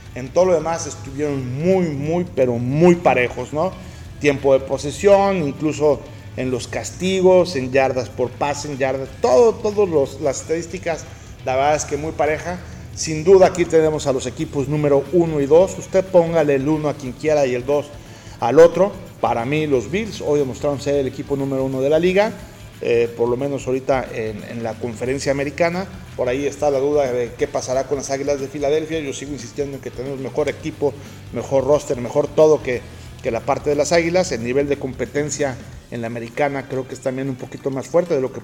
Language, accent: Spanish, Mexican